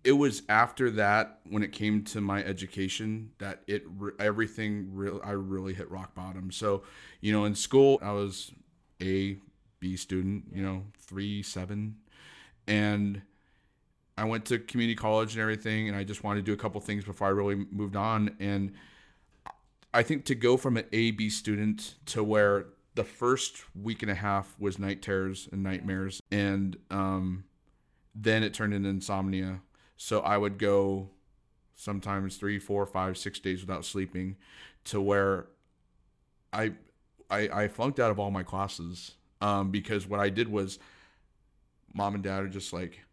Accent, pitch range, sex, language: American, 95-105 Hz, male, English